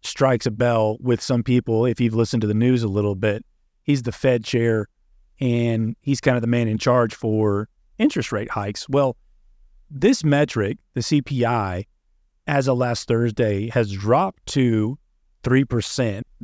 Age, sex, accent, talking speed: 30-49, male, American, 160 wpm